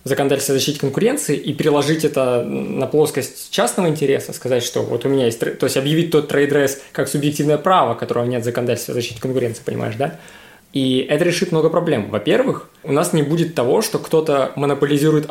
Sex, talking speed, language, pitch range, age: male, 175 wpm, Russian, 135-160 Hz, 20-39